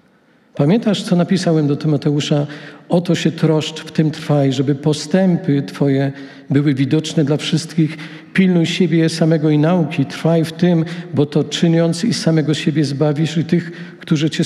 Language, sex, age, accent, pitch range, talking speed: Polish, male, 50-69, native, 145-175 Hz, 160 wpm